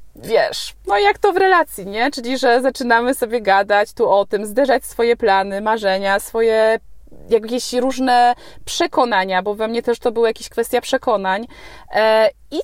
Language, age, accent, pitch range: Polish, 20-39, native, 220-295 Hz